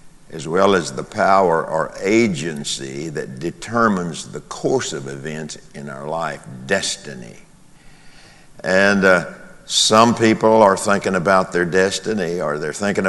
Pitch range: 80-100 Hz